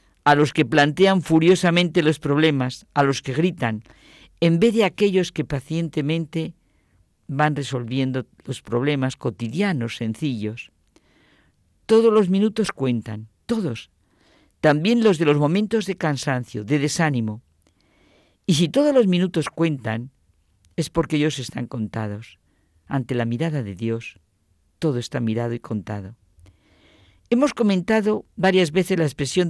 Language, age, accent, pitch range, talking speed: Spanish, 50-69, Spanish, 120-190 Hz, 130 wpm